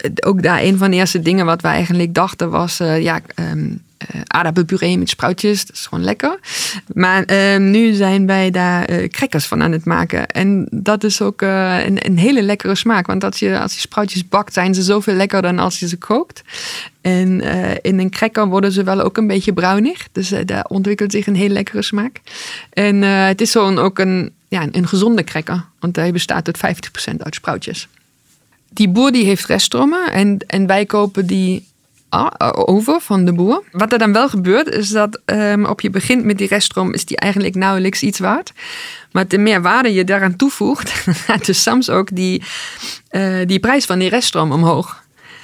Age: 20-39